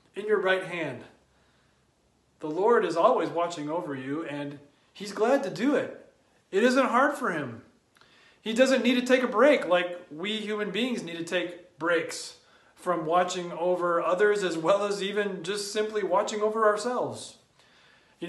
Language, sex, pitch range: English, male, 150-210 Hz